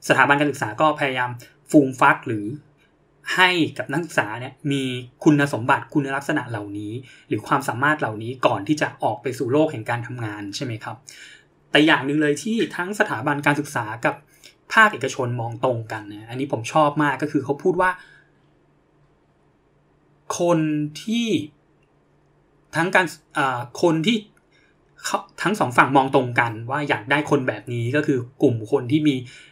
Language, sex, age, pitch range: English, male, 20-39, 125-155 Hz